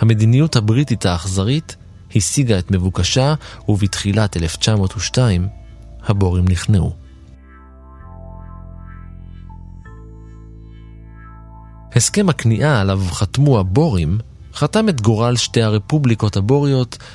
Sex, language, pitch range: male, Hebrew, 95-125 Hz